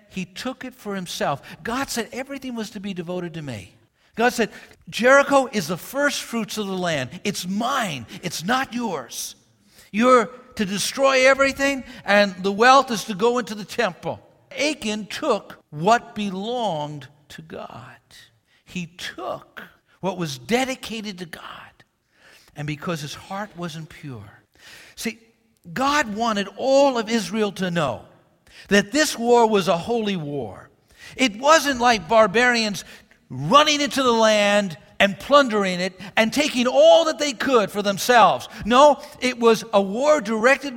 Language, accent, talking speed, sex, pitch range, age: English, American, 150 wpm, male, 195-260 Hz, 60-79